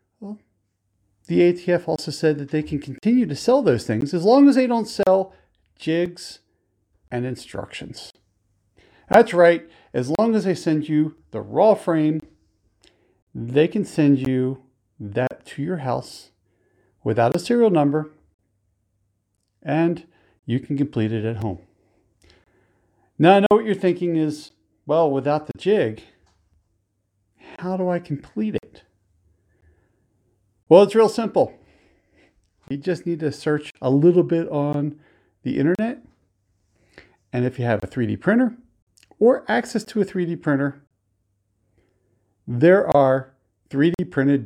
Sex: male